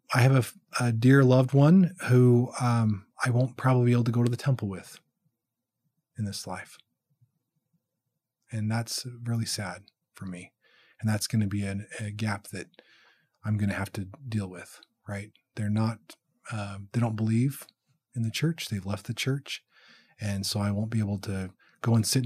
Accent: American